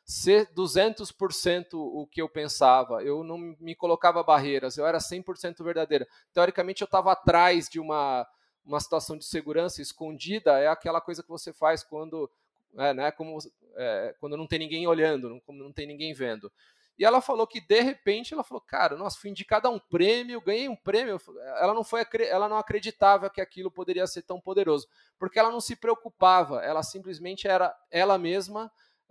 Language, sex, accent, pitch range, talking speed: Portuguese, male, Brazilian, 155-200 Hz, 180 wpm